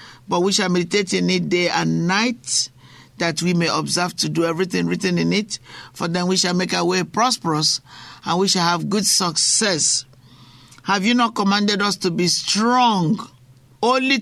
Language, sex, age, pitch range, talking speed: English, male, 50-69, 125-195 Hz, 175 wpm